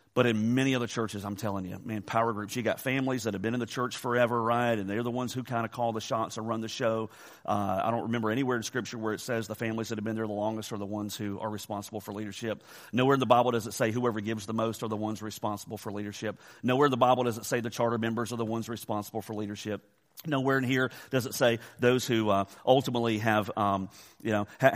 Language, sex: English, male